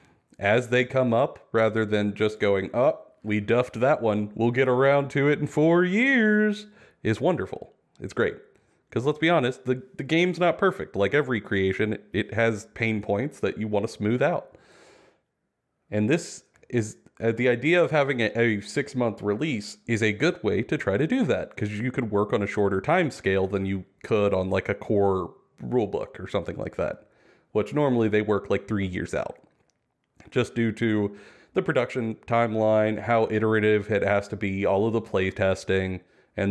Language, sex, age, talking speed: English, male, 30-49, 190 wpm